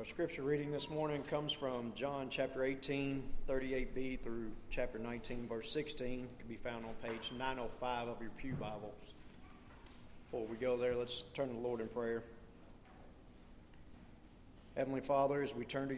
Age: 40-59